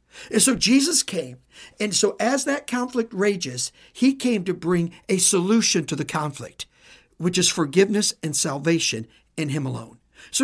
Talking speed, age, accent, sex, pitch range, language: 160 wpm, 60-79, American, male, 165-260 Hz, English